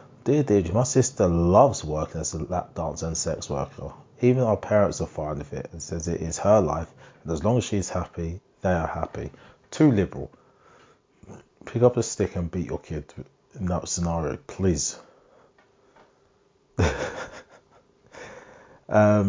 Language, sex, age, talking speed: English, male, 30-49, 160 wpm